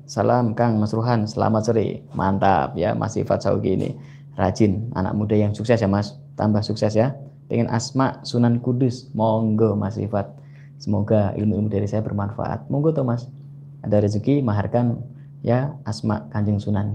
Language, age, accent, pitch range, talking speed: Indonesian, 20-39, native, 105-140 Hz, 155 wpm